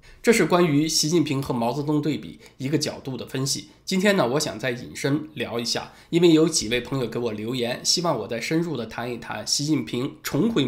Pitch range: 125-165 Hz